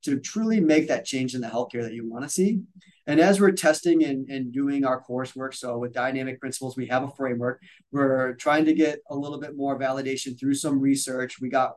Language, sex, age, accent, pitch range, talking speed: English, male, 30-49, American, 130-150 Hz, 220 wpm